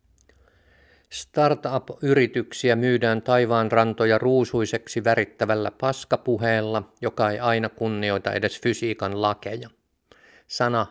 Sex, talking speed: male, 85 wpm